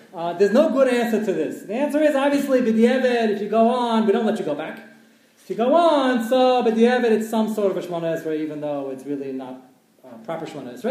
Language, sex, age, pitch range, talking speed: English, male, 30-49, 160-220 Hz, 240 wpm